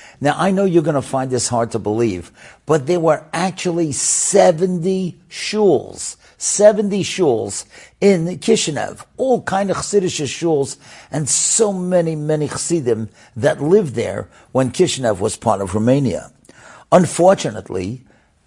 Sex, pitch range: male, 115-165 Hz